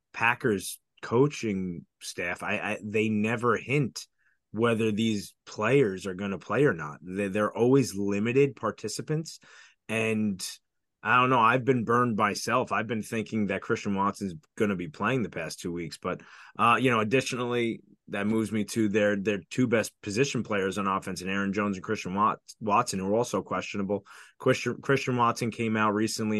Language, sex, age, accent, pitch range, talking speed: English, male, 20-39, American, 105-120 Hz, 180 wpm